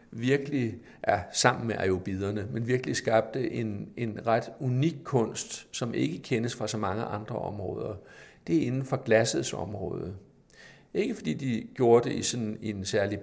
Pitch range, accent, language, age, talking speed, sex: 110-135 Hz, native, Danish, 60-79, 170 wpm, male